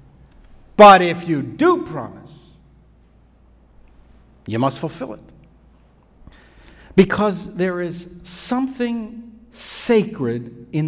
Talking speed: 85 wpm